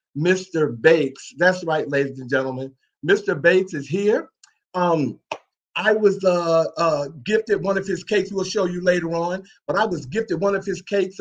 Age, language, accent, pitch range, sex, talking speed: 50-69, English, American, 160-210 Hz, male, 180 wpm